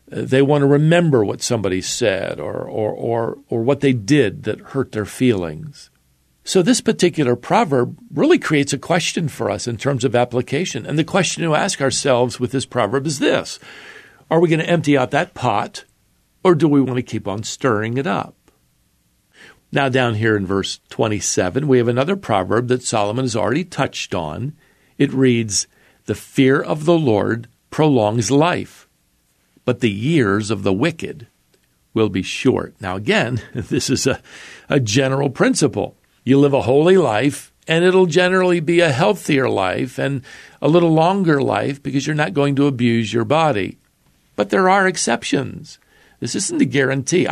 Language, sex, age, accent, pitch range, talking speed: English, male, 50-69, American, 115-160 Hz, 170 wpm